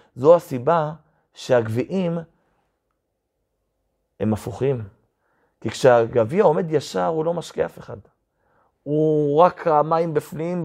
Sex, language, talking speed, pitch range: male, Hebrew, 105 wpm, 115-155 Hz